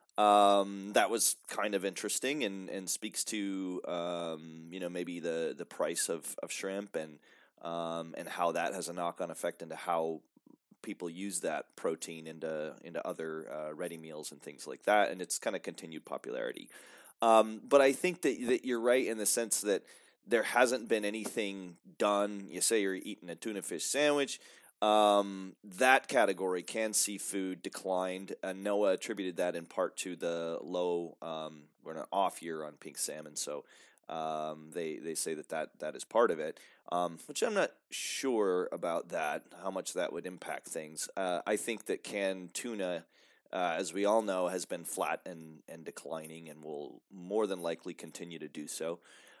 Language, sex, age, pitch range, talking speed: English, male, 30-49, 80-100 Hz, 185 wpm